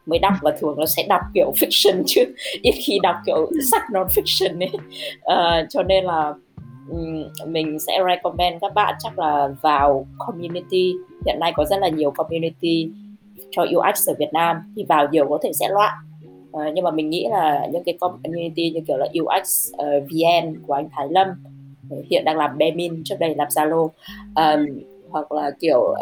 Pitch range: 150-195 Hz